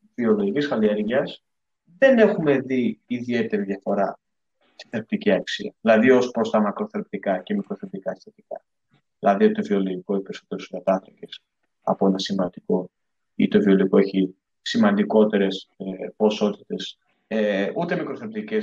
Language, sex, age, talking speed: Greek, male, 20-39, 120 wpm